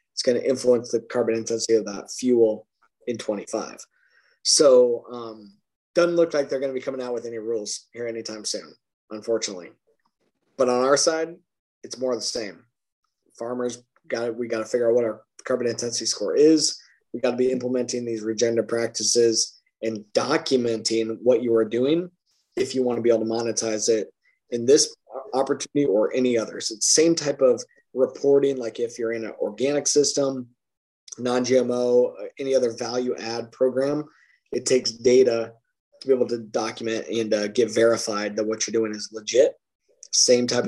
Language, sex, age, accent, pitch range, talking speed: English, male, 20-39, American, 115-140 Hz, 175 wpm